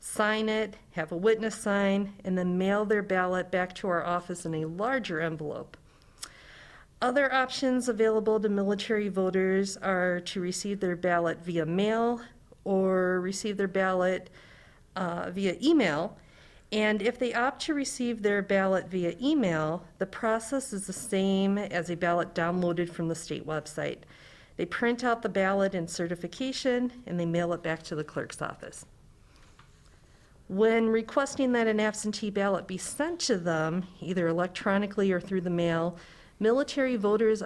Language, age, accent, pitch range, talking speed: English, 50-69, American, 175-225 Hz, 155 wpm